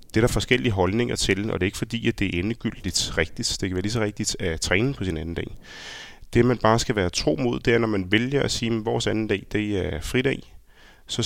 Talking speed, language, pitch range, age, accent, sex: 265 wpm, Danish, 95-120 Hz, 30-49, native, male